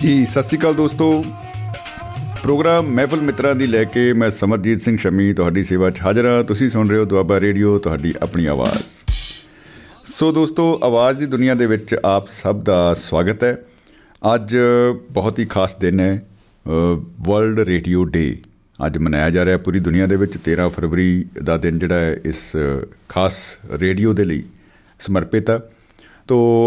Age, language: 50-69, Punjabi